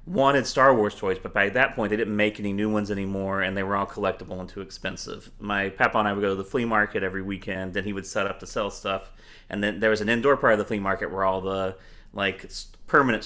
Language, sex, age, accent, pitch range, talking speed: English, male, 30-49, American, 95-110 Hz, 265 wpm